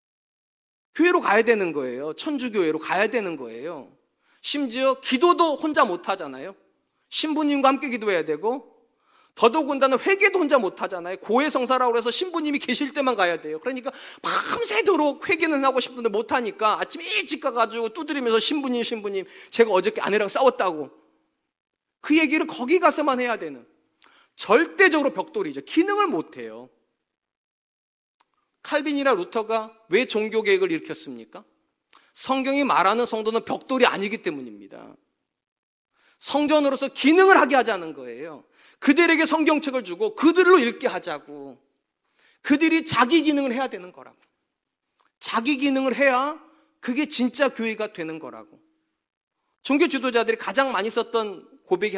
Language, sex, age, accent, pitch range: Korean, male, 30-49, native, 225-315 Hz